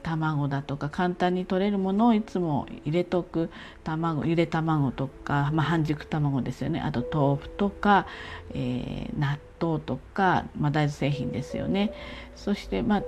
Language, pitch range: Japanese, 145-210 Hz